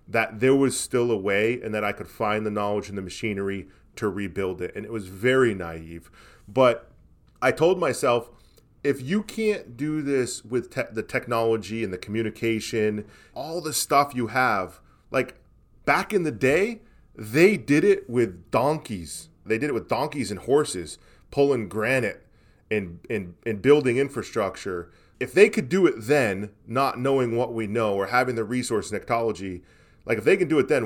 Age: 30-49